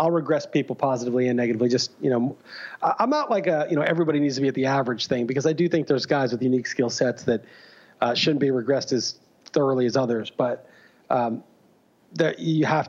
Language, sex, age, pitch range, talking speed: English, male, 40-59, 125-155 Hz, 215 wpm